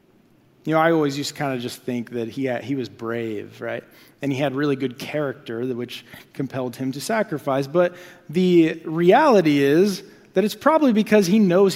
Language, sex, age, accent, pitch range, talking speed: English, male, 30-49, American, 140-190 Hz, 190 wpm